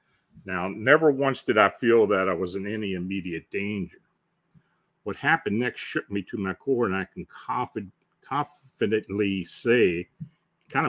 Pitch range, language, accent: 95-140 Hz, English, American